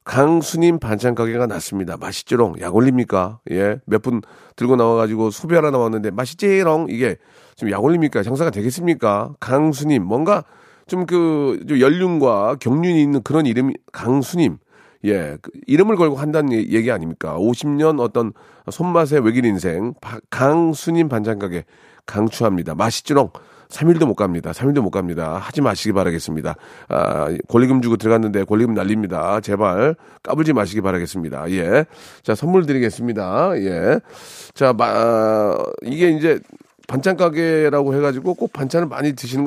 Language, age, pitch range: Korean, 40-59, 110-160 Hz